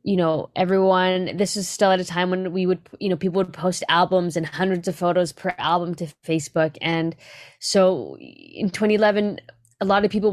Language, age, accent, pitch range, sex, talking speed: English, 10-29, American, 170-195 Hz, female, 200 wpm